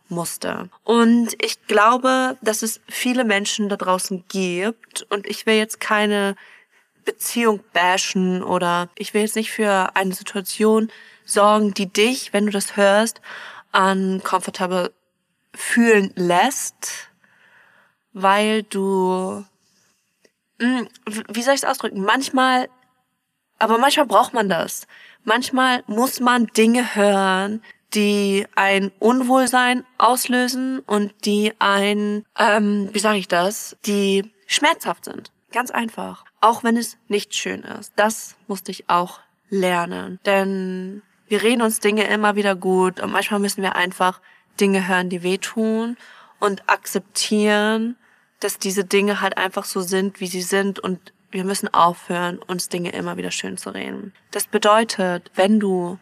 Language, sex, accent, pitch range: German, female, German, 190-225 Hz